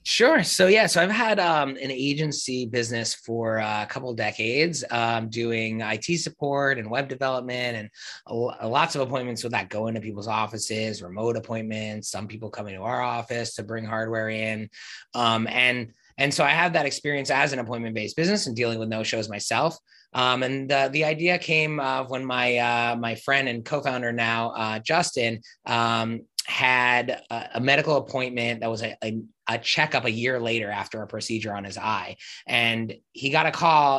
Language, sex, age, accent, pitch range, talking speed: English, male, 20-39, American, 115-135 Hz, 185 wpm